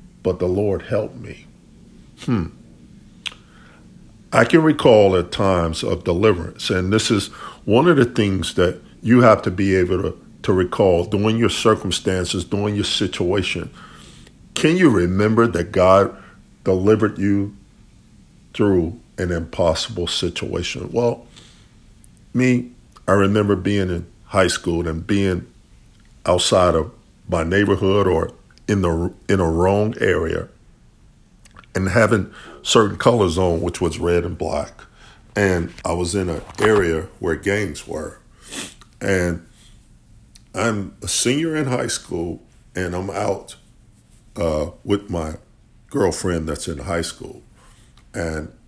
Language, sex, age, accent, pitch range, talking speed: English, male, 50-69, American, 85-110 Hz, 130 wpm